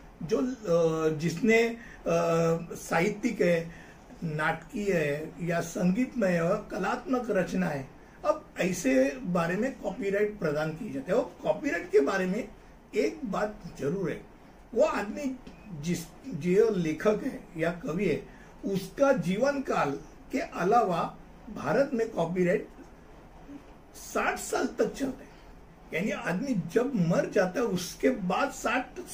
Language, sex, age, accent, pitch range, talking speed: Hindi, male, 60-79, native, 180-245 Hz, 120 wpm